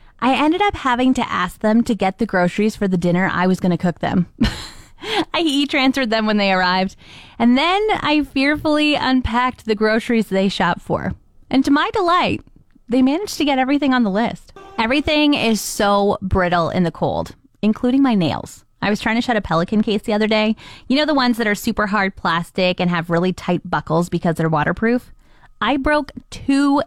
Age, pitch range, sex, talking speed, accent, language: 20-39, 185-260 Hz, female, 200 wpm, American, English